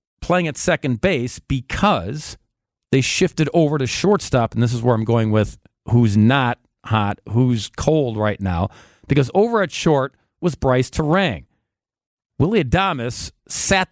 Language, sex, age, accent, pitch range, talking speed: English, male, 50-69, American, 125-175 Hz, 145 wpm